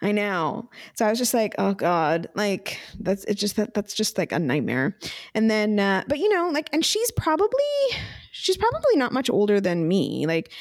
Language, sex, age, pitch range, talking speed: English, female, 20-39, 185-230 Hz, 210 wpm